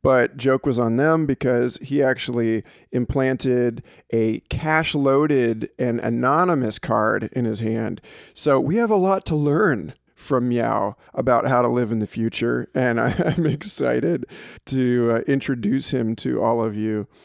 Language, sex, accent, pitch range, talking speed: English, male, American, 115-145 Hz, 155 wpm